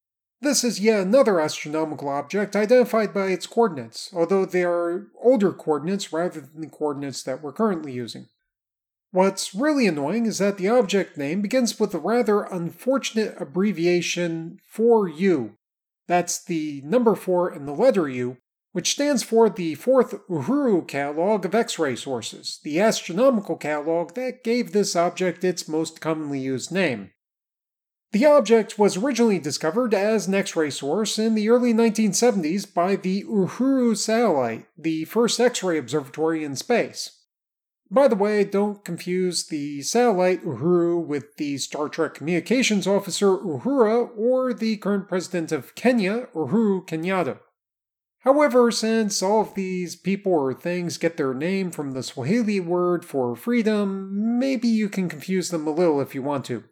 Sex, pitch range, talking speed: male, 160-225 Hz, 150 wpm